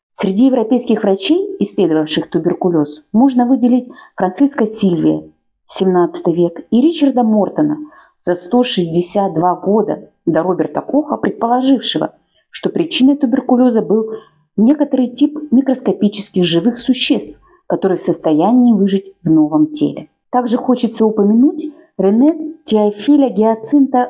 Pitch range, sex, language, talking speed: 180-250 Hz, female, Russian, 105 wpm